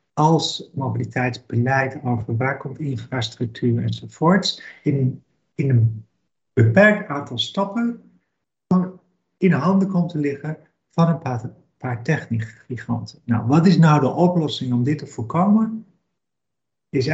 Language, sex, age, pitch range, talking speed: Dutch, male, 50-69, 125-155 Hz, 125 wpm